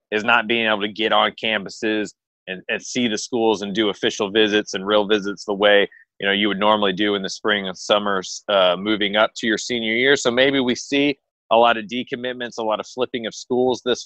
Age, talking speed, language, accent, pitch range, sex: 30-49, 235 wpm, English, American, 105-125 Hz, male